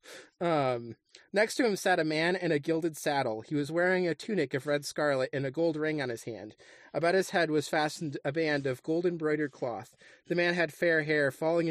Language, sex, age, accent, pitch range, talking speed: English, male, 30-49, American, 140-170 Hz, 220 wpm